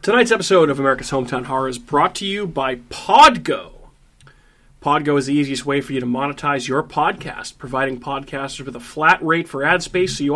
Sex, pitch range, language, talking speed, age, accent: male, 135-165 Hz, English, 195 wpm, 30-49, American